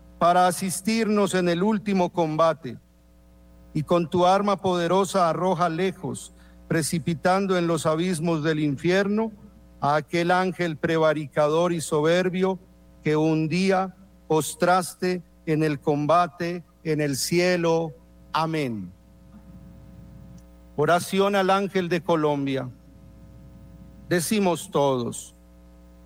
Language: Spanish